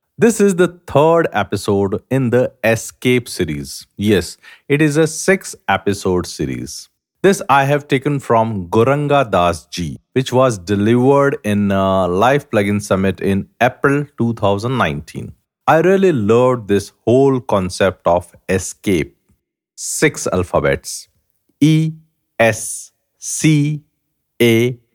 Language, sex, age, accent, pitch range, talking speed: English, male, 50-69, Indian, 105-145 Hz, 115 wpm